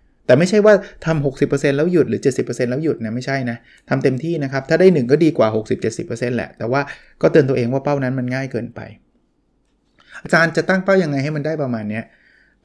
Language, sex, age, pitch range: Thai, male, 20-39, 125-160 Hz